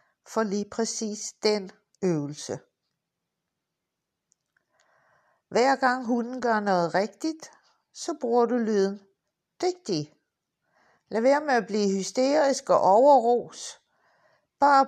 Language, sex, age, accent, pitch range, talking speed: Danish, female, 60-79, native, 205-275 Hz, 100 wpm